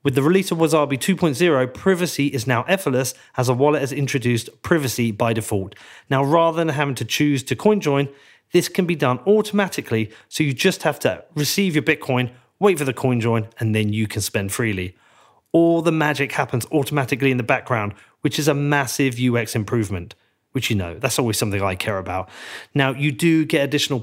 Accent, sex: British, male